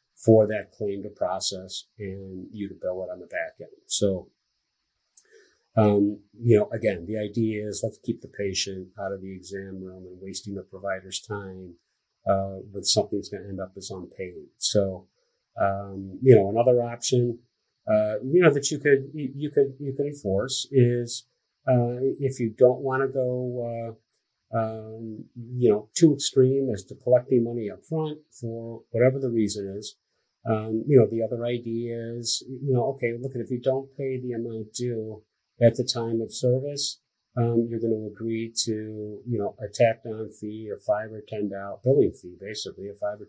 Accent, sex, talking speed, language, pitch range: American, male, 185 wpm, English, 100-125 Hz